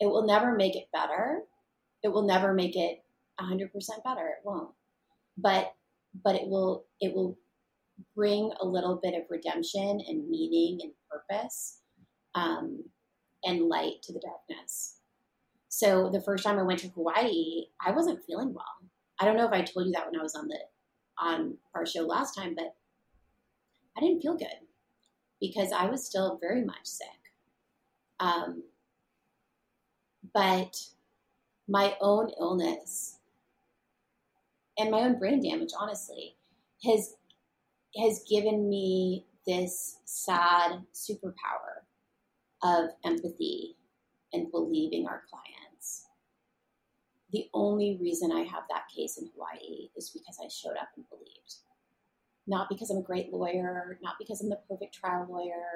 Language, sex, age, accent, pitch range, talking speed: English, female, 30-49, American, 185-260 Hz, 145 wpm